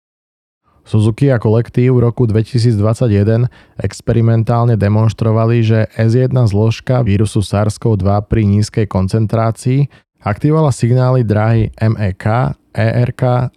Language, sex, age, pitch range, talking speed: Slovak, male, 20-39, 105-125 Hz, 95 wpm